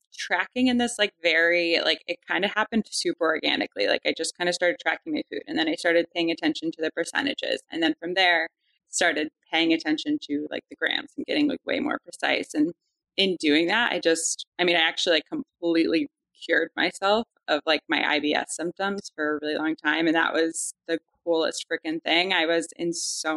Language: English